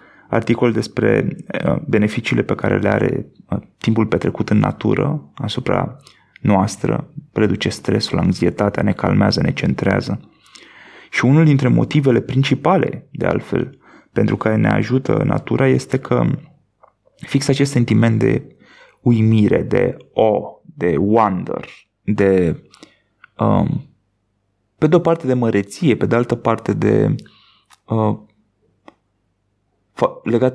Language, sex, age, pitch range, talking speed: Romanian, male, 30-49, 100-130 Hz, 115 wpm